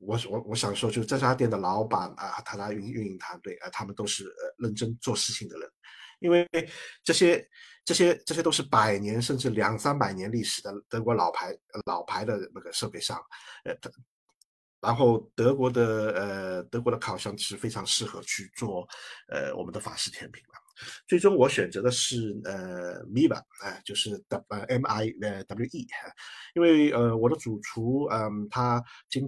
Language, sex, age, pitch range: Chinese, male, 50-69, 110-145 Hz